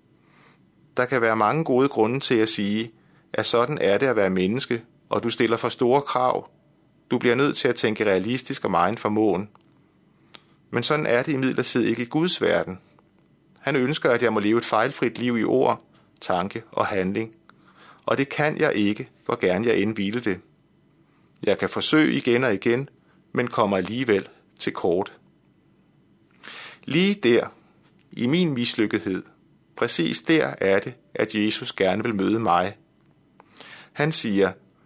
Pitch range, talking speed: 110-145 Hz, 160 wpm